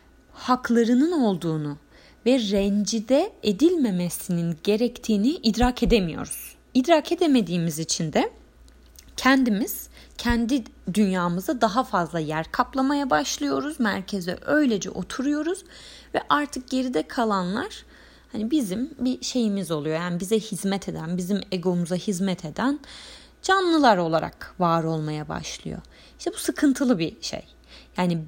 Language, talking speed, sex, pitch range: Turkish, 110 wpm, female, 185-245 Hz